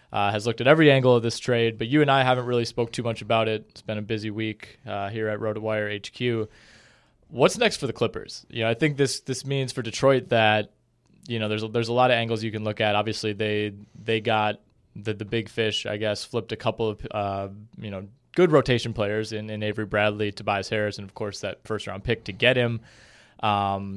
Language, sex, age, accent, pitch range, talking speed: English, male, 20-39, American, 105-120 Hz, 245 wpm